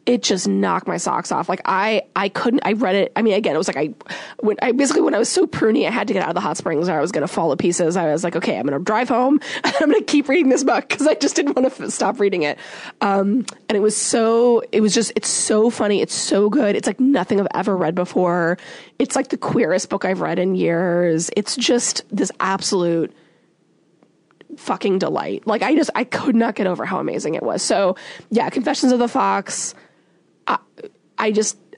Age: 20-39